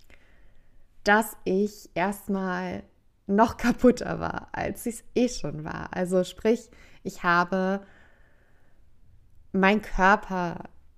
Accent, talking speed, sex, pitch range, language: German, 100 wpm, female, 165-195 Hz, German